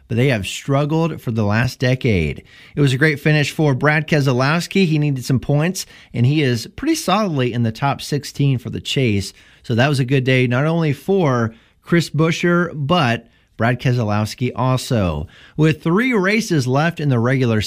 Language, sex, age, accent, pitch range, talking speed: English, male, 30-49, American, 120-165 Hz, 185 wpm